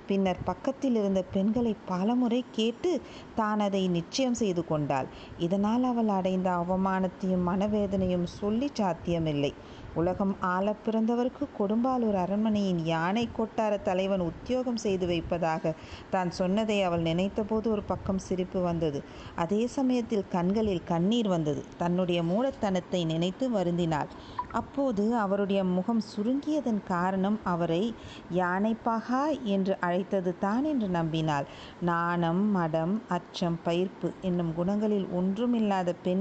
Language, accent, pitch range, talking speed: Tamil, native, 175-215 Hz, 110 wpm